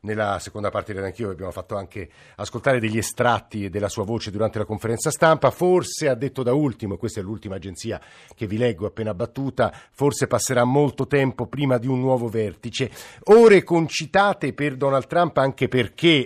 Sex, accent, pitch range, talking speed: male, native, 105-125 Hz, 175 wpm